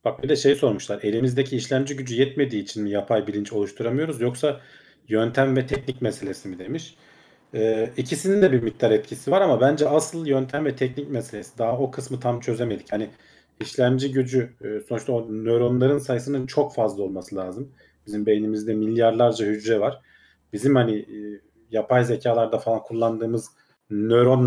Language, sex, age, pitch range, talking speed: Turkish, male, 40-59, 105-130 Hz, 155 wpm